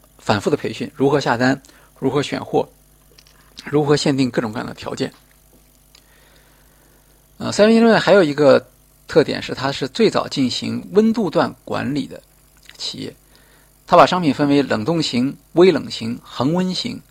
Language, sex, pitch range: Chinese, male, 135-200 Hz